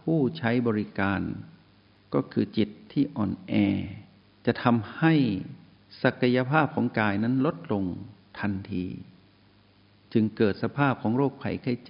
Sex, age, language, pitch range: male, 60-79, Thai, 100-125 Hz